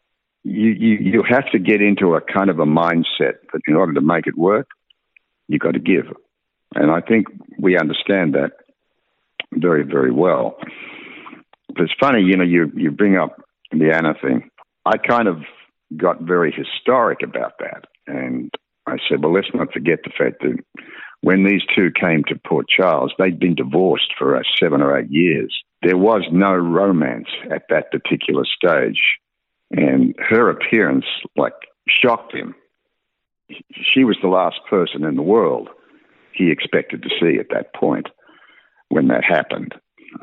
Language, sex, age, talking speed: English, male, 60-79, 165 wpm